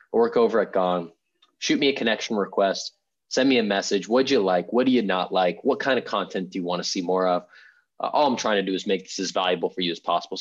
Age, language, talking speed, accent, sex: 20-39, English, 275 wpm, American, male